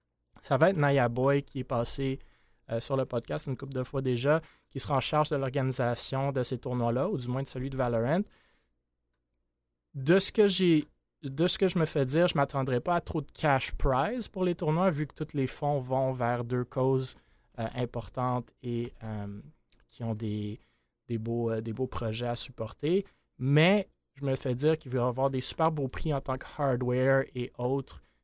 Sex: male